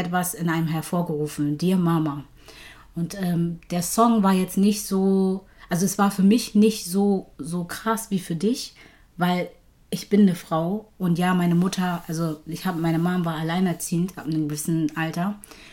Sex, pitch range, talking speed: female, 160-190 Hz, 175 wpm